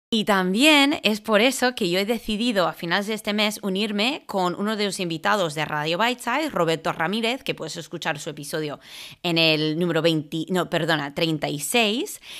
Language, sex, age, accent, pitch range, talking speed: English, female, 20-39, Spanish, 175-235 Hz, 165 wpm